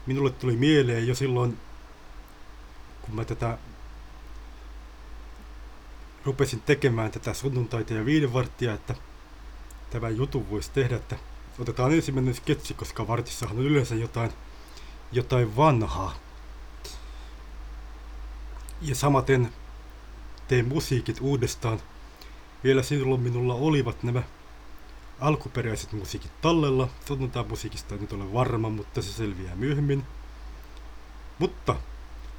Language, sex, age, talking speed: Finnish, male, 30-49, 100 wpm